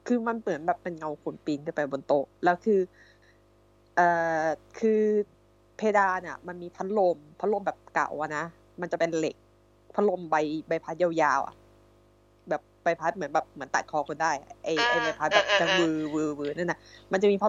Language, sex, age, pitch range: Thai, female, 20-39, 145-205 Hz